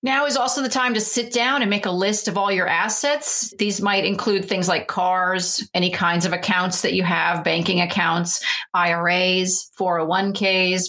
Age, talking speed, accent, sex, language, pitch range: 30-49, 180 wpm, American, female, English, 175-210 Hz